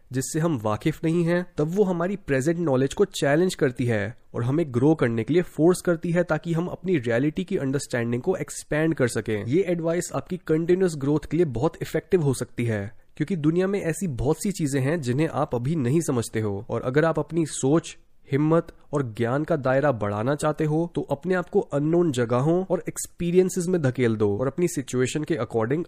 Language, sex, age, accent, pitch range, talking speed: Hindi, male, 20-39, native, 130-180 Hz, 205 wpm